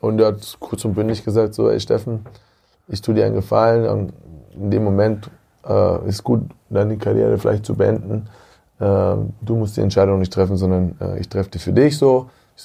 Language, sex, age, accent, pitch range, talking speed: German, male, 20-39, German, 100-115 Hz, 205 wpm